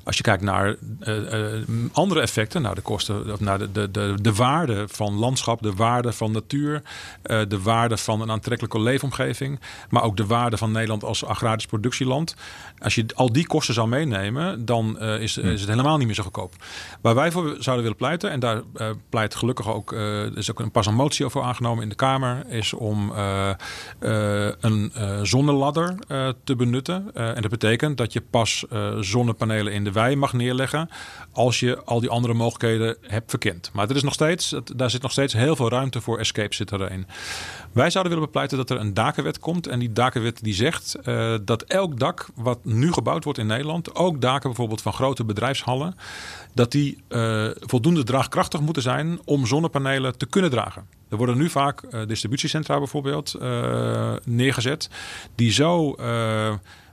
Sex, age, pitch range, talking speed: male, 40-59, 110-135 Hz, 195 wpm